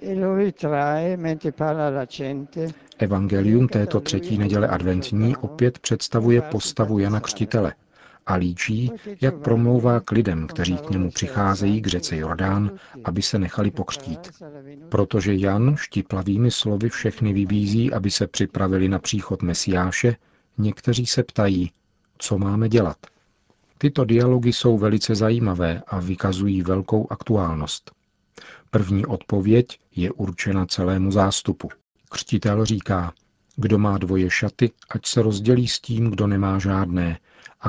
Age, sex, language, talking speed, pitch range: 50-69, male, Czech, 120 wpm, 95-115 Hz